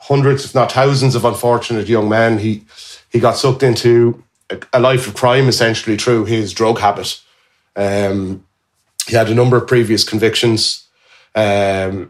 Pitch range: 100-120 Hz